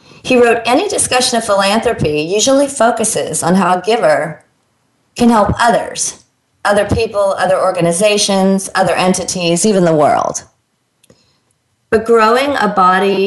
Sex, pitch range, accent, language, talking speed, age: female, 165-210 Hz, American, English, 125 wpm, 40-59